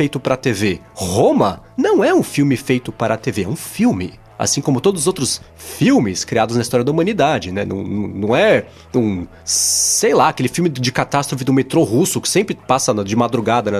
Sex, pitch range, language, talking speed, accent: male, 115-165 Hz, Portuguese, 200 wpm, Brazilian